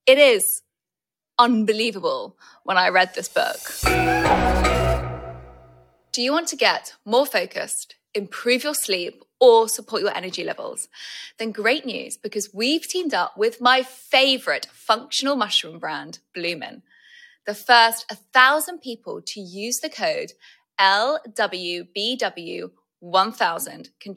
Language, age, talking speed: English, 20-39, 115 wpm